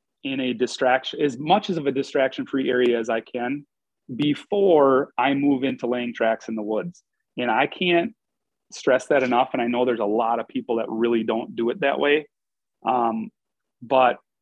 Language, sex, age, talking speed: English, male, 30-49, 185 wpm